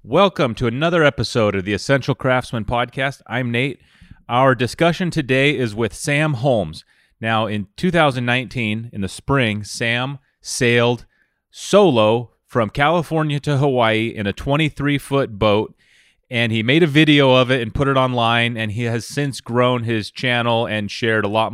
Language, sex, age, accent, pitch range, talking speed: English, male, 30-49, American, 110-140 Hz, 160 wpm